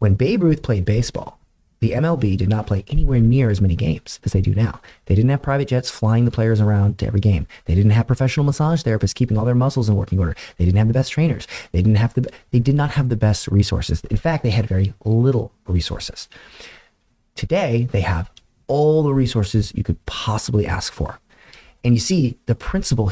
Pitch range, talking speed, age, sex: 95-125 Hz, 220 wpm, 30-49, male